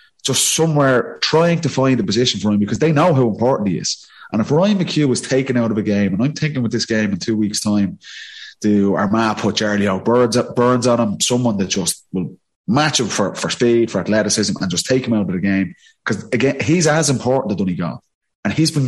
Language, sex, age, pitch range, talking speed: English, male, 30-49, 100-130 Hz, 230 wpm